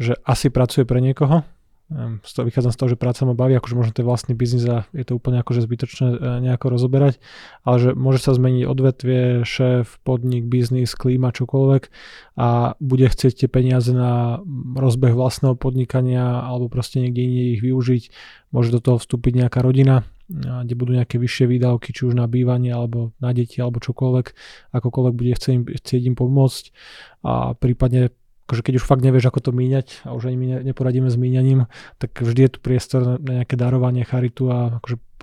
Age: 20-39